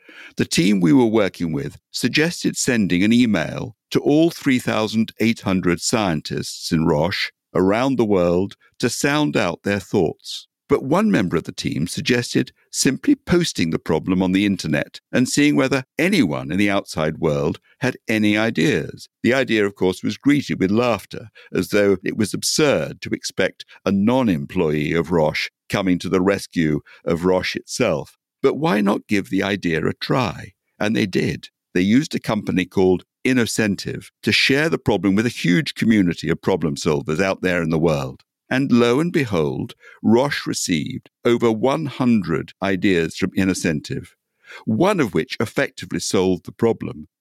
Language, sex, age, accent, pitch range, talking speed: English, male, 60-79, British, 90-125 Hz, 160 wpm